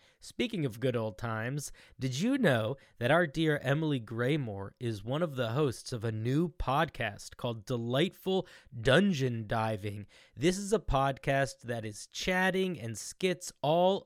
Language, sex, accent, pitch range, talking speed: English, male, American, 120-170 Hz, 155 wpm